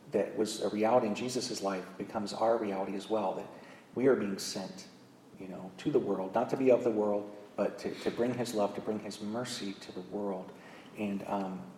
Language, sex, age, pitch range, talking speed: English, male, 40-59, 100-115 Hz, 220 wpm